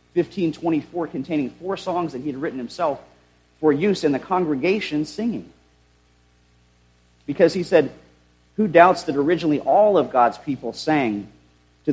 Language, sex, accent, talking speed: English, male, American, 140 wpm